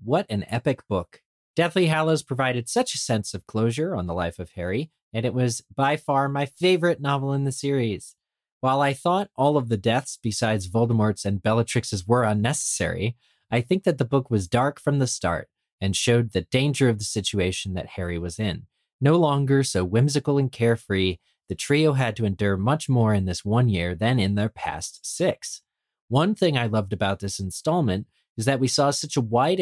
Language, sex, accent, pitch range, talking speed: English, male, American, 100-135 Hz, 200 wpm